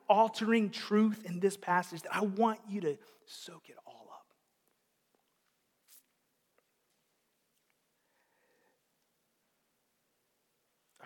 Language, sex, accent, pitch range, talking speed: English, male, American, 150-200 Hz, 80 wpm